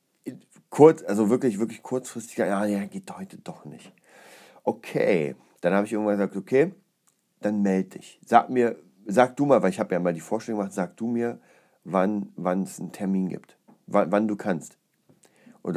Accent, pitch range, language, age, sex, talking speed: German, 100-120 Hz, German, 40-59, male, 180 wpm